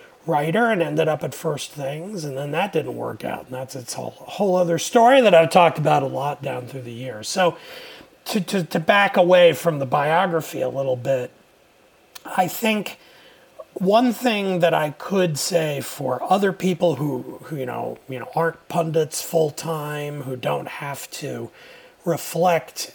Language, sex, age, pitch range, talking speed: English, male, 40-59, 140-185 Hz, 180 wpm